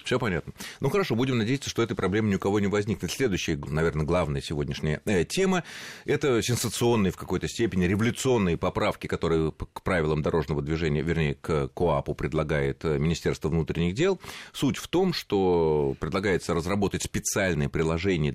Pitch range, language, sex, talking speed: 80-120 Hz, Russian, male, 150 wpm